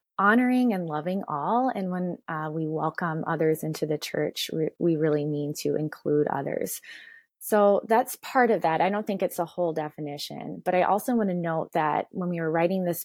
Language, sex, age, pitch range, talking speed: English, female, 20-39, 155-190 Hz, 200 wpm